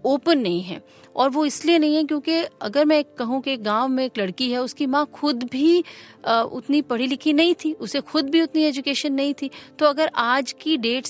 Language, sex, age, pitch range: Hindi, female, 40-59, 215-285 Hz